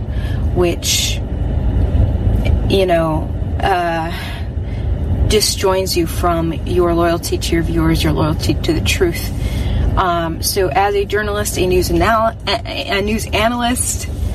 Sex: female